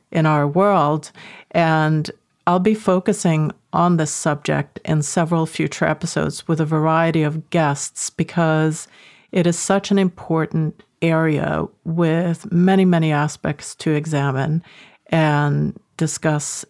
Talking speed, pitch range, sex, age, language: 120 wpm, 155-185 Hz, female, 50-69, English